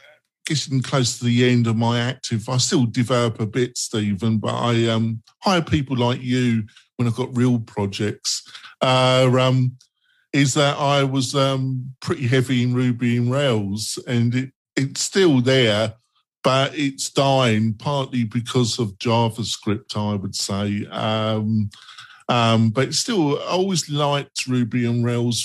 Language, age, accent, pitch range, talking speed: English, 50-69, British, 115-145 Hz, 150 wpm